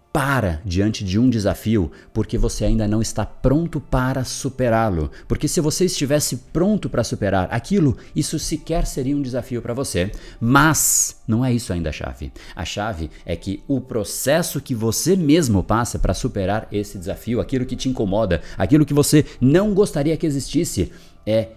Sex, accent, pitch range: male, Brazilian, 85-120 Hz